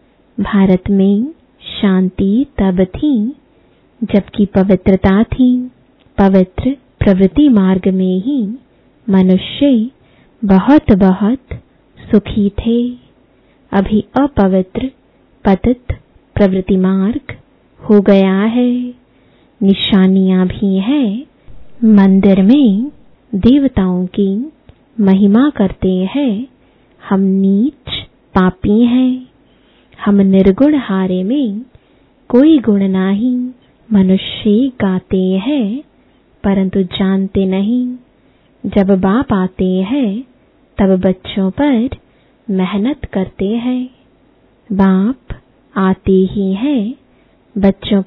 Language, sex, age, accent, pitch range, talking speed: English, female, 20-39, Indian, 195-250 Hz, 85 wpm